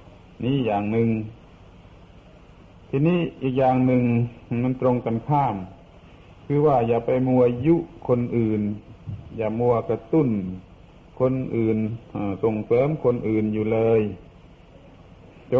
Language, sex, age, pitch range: Thai, male, 60-79, 100-125 Hz